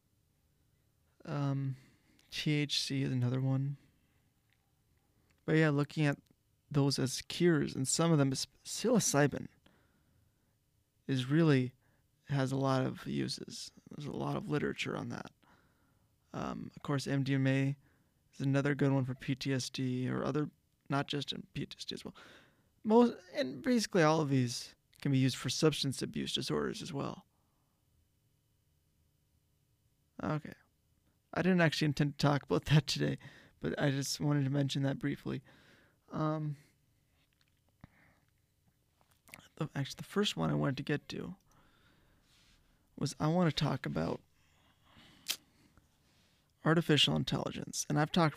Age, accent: 20-39, American